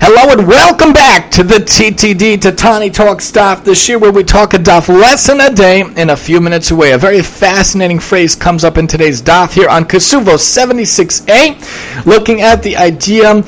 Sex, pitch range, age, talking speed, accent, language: male, 170-205 Hz, 40-59, 185 wpm, American, English